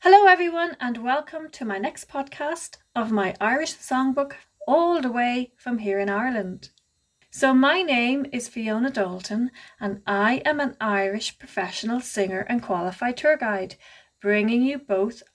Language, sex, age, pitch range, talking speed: English, female, 40-59, 200-265 Hz, 155 wpm